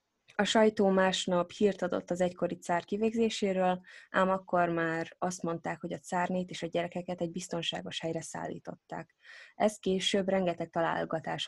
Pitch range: 165-195 Hz